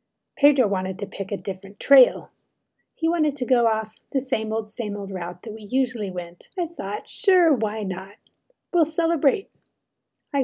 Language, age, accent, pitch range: English, 30-49, American, 200-260 Hz